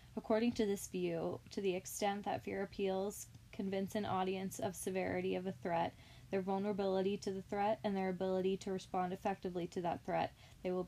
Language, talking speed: English, 190 wpm